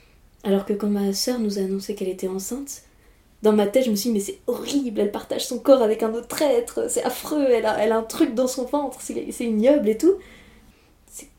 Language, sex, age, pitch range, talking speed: French, female, 20-39, 205-260 Hz, 240 wpm